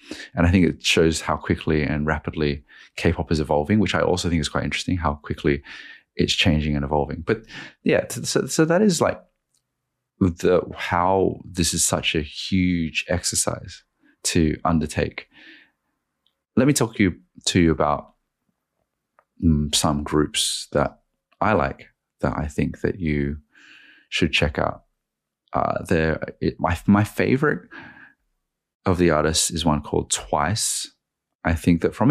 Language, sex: English, male